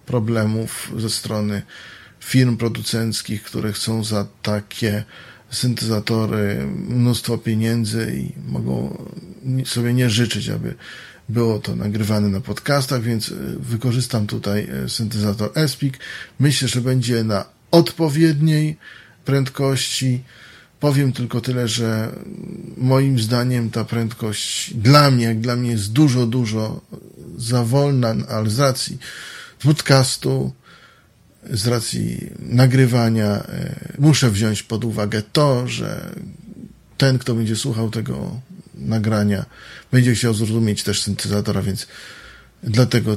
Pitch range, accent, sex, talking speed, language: 110-130 Hz, native, male, 110 wpm, Polish